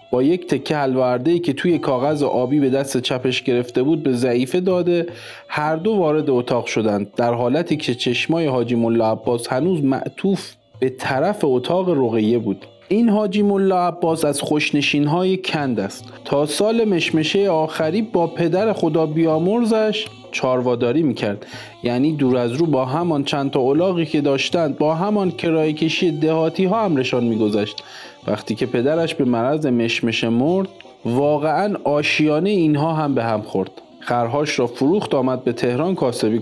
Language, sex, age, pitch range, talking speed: Persian, male, 40-59, 125-170 Hz, 150 wpm